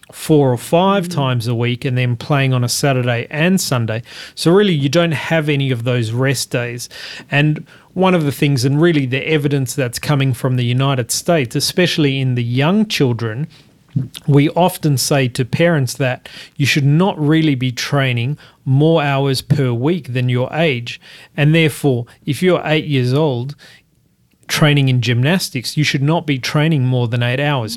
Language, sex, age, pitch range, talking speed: English, male, 40-59, 125-155 Hz, 175 wpm